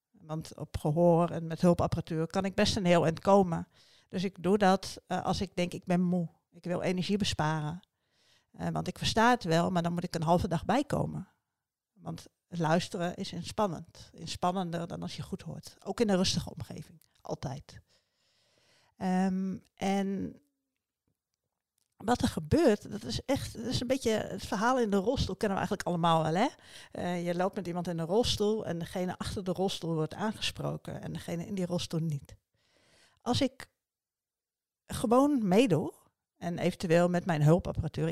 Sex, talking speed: female, 175 wpm